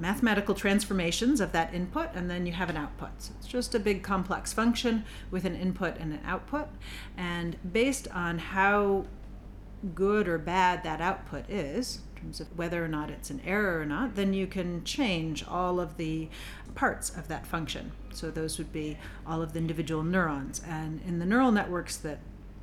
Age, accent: 40-59, American